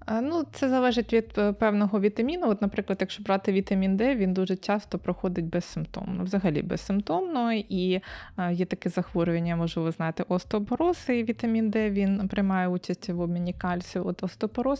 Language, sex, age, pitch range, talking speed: Ukrainian, female, 20-39, 180-220 Hz, 145 wpm